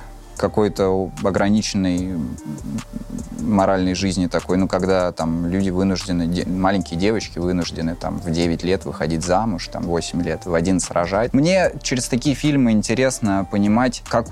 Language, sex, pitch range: Russian, male, 90-105 Hz